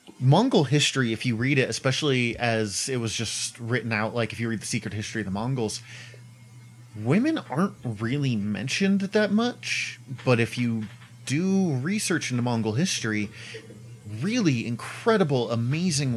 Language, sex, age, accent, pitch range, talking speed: English, male, 30-49, American, 110-125 Hz, 150 wpm